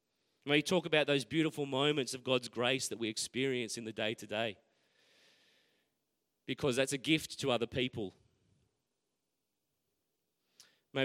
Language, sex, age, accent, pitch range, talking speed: English, male, 30-49, Australian, 110-130 Hz, 140 wpm